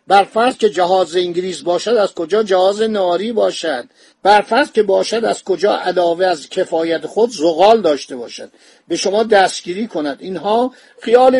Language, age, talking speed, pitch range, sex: Persian, 50-69, 145 wpm, 165-215 Hz, male